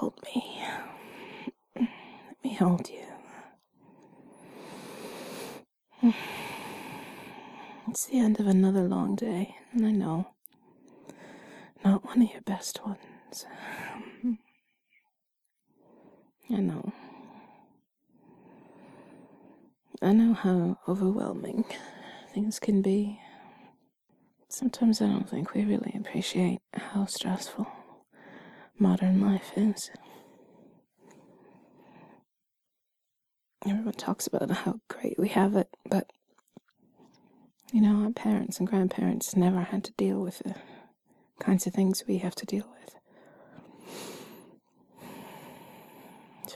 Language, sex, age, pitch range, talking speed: English, female, 20-39, 195-235 Hz, 95 wpm